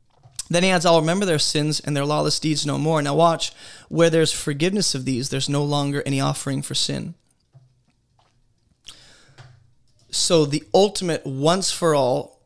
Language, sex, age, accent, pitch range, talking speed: English, male, 20-39, American, 135-160 Hz, 150 wpm